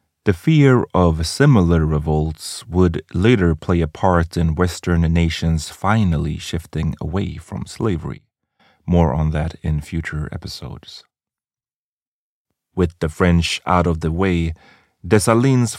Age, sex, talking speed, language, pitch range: 30-49, male, 120 wpm, English, 80-100 Hz